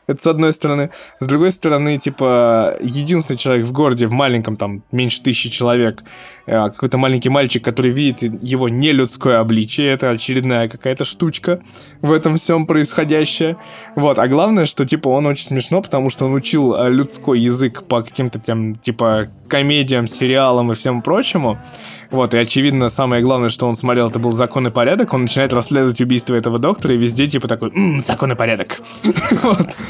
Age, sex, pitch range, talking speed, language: 20-39, male, 120-155 Hz, 170 wpm, Russian